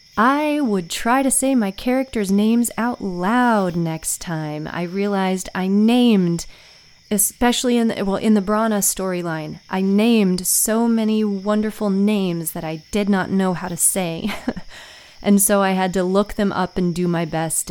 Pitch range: 175-215 Hz